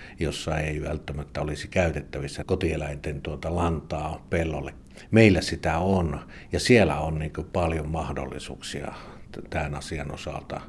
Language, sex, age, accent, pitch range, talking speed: Finnish, male, 50-69, native, 75-90 Hz, 105 wpm